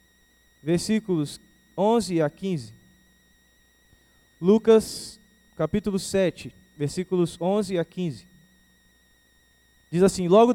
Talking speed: 80 wpm